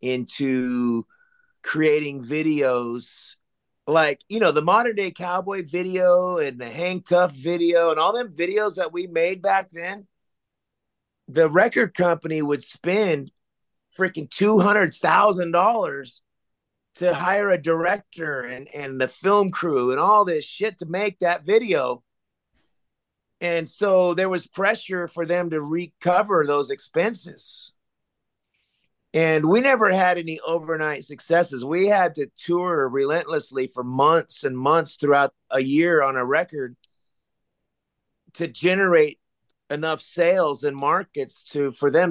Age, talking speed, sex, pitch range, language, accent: 30-49, 130 wpm, male, 150-185 Hz, English, American